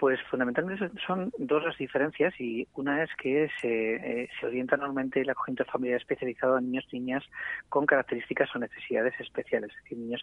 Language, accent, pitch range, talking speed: Spanish, Spanish, 120-135 Hz, 190 wpm